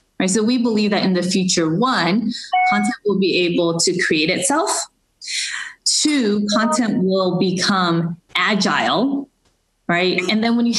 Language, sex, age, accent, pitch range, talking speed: English, female, 20-39, American, 160-205 Hz, 140 wpm